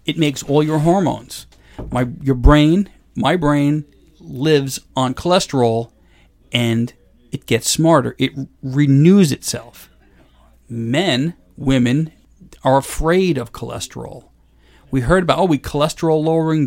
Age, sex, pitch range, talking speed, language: 40-59, male, 120-160 Hz, 120 wpm, English